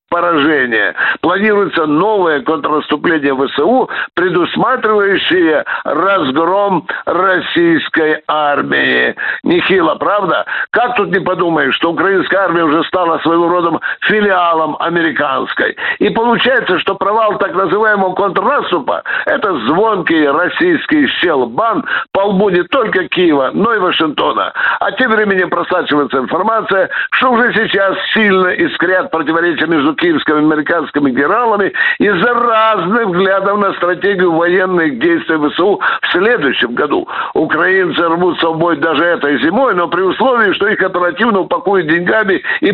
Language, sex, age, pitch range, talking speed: Russian, male, 60-79, 165-220 Hz, 115 wpm